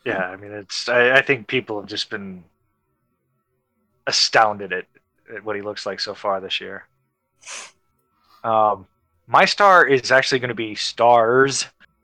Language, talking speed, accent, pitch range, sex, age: English, 155 wpm, American, 115-145 Hz, male, 20-39